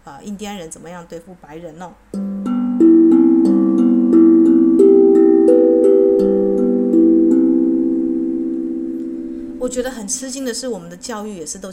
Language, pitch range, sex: Chinese, 160-205 Hz, female